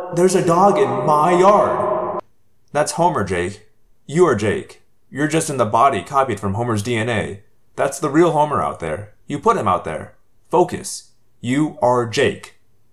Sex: male